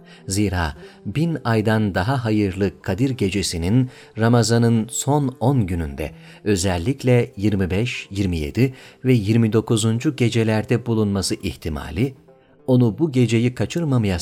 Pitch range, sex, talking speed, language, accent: 100-130 Hz, male, 95 wpm, Turkish, native